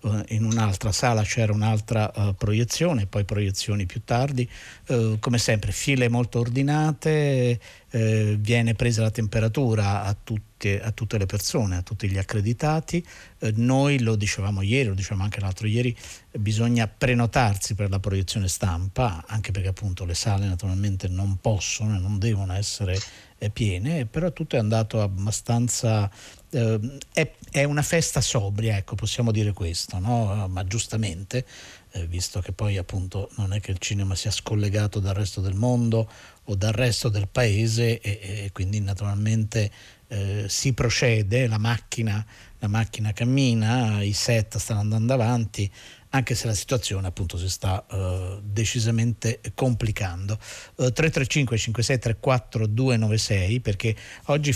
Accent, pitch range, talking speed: native, 100-120 Hz, 140 wpm